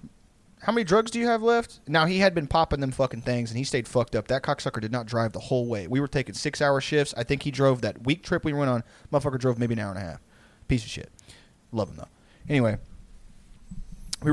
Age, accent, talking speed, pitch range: 30-49, American, 245 wpm, 110-145 Hz